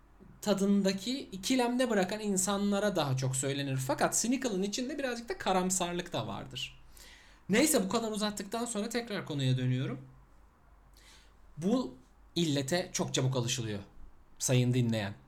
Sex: male